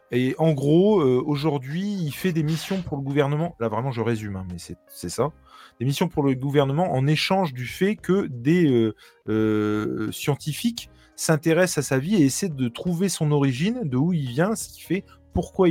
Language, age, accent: French, 20-39, French